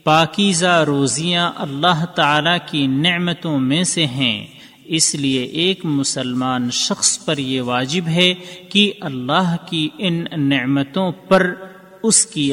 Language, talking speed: Urdu, 125 wpm